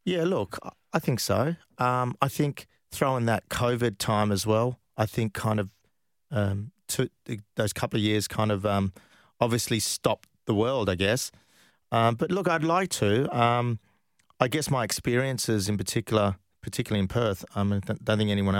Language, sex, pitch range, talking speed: English, male, 105-125 Hz, 175 wpm